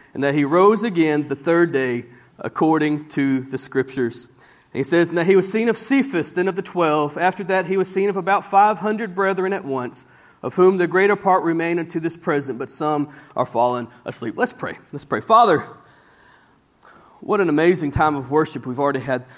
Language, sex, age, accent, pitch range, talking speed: English, male, 40-59, American, 135-180 Hz, 200 wpm